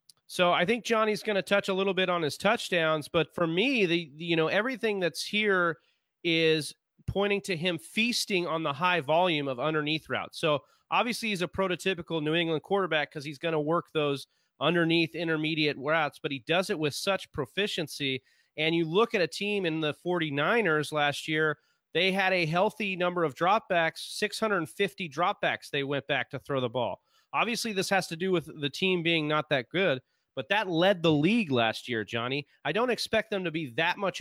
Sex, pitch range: male, 150-190 Hz